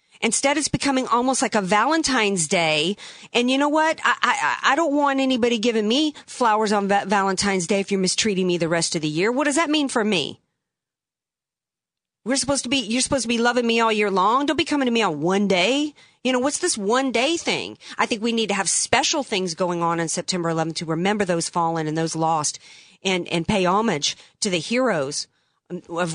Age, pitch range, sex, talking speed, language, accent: 40-59, 170-230 Hz, female, 220 wpm, English, American